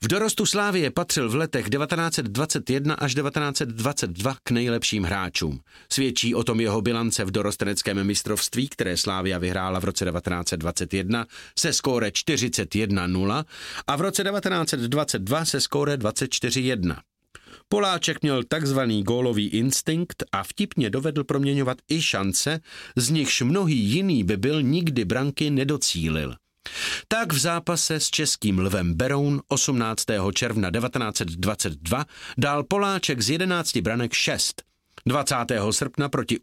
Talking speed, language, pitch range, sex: 125 wpm, Czech, 110-155 Hz, male